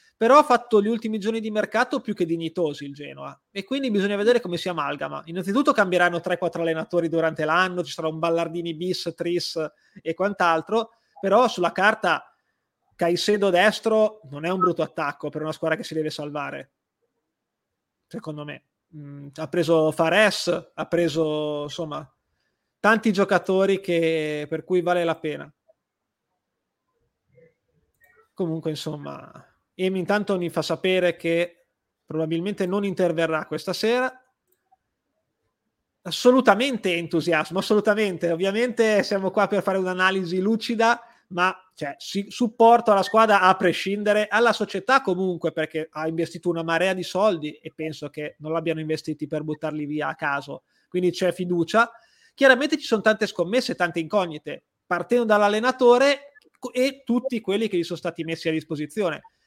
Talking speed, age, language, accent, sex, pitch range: 140 wpm, 20-39, Italian, native, male, 165-215 Hz